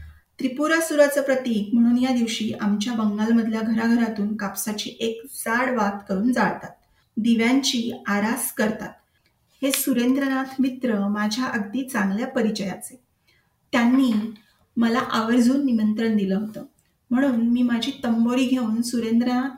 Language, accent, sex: Marathi, native, female